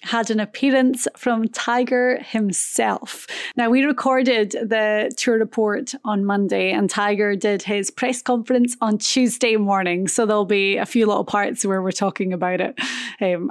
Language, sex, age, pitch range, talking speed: English, female, 20-39, 195-235 Hz, 160 wpm